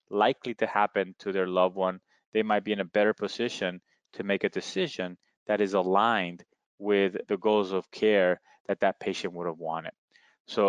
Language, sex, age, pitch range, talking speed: English, male, 20-39, 95-115 Hz, 185 wpm